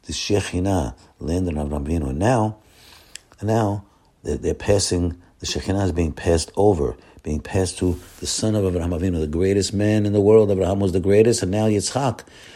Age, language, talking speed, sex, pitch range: 50-69, English, 185 wpm, male, 85-105 Hz